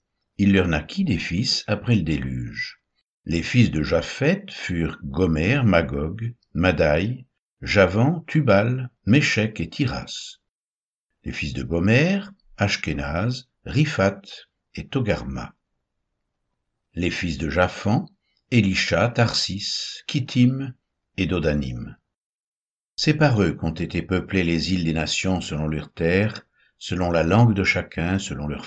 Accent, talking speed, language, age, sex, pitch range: French, 120 wpm, French, 60-79, male, 85-125 Hz